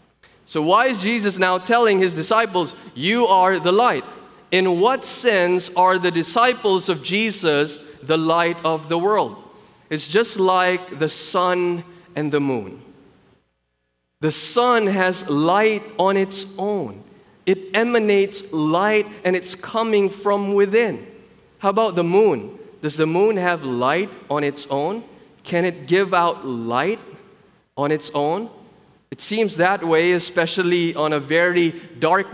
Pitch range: 170-225 Hz